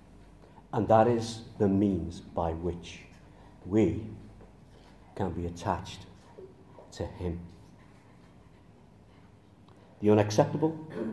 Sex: male